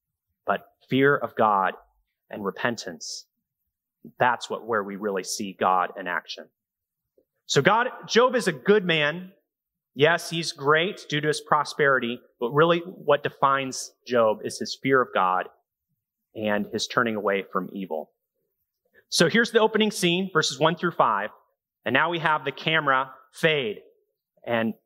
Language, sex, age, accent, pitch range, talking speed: English, male, 30-49, American, 130-190 Hz, 150 wpm